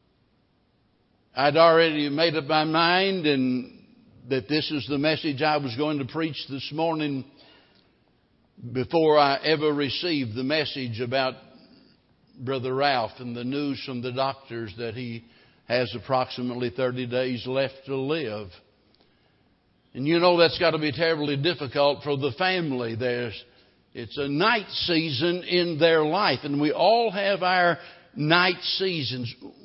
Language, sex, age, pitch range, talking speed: English, male, 60-79, 125-150 Hz, 140 wpm